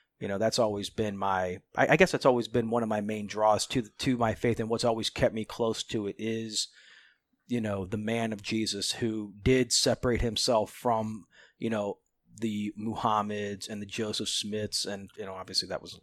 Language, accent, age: English, American, 30-49